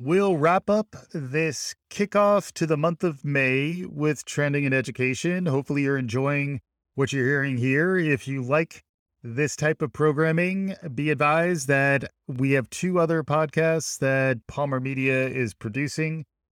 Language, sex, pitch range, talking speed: English, male, 120-150 Hz, 150 wpm